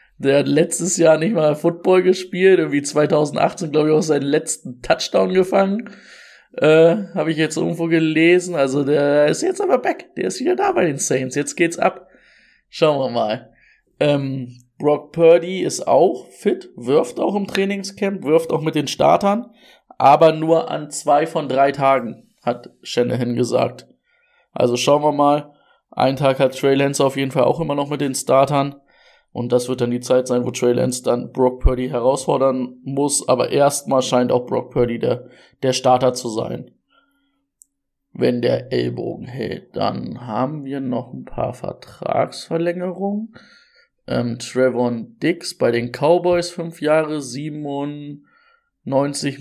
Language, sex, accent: German, male, German